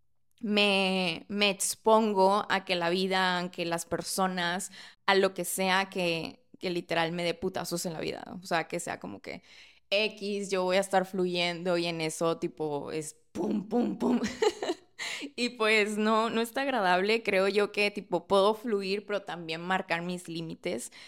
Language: Spanish